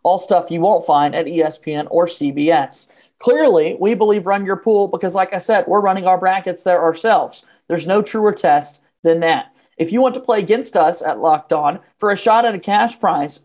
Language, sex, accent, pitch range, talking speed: English, male, American, 165-205 Hz, 215 wpm